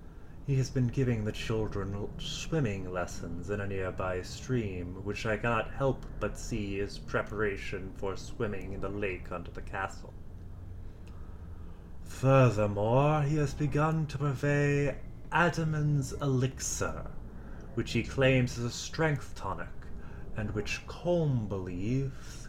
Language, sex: English, male